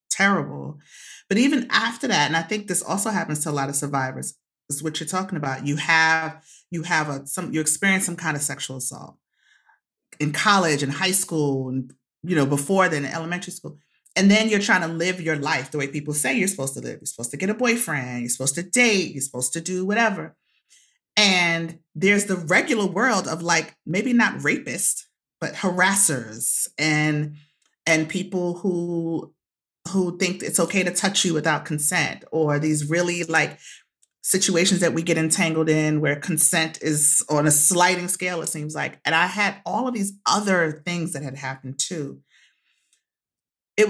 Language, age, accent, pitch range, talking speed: English, 30-49, American, 150-190 Hz, 185 wpm